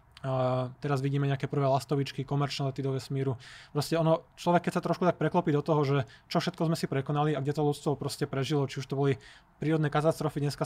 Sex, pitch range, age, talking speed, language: male, 135-145 Hz, 20-39, 215 wpm, Slovak